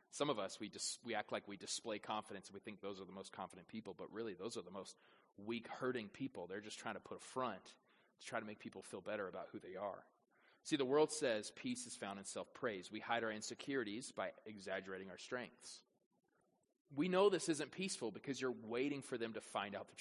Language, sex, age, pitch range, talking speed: English, male, 30-49, 120-155 Hz, 235 wpm